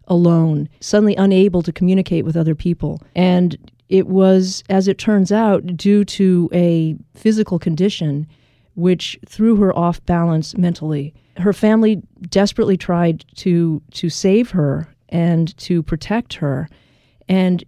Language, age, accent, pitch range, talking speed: English, 40-59, American, 160-190 Hz, 130 wpm